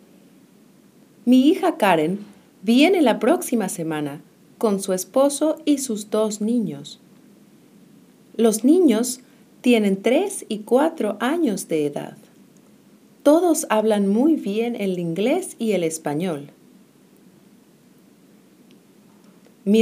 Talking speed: 100 wpm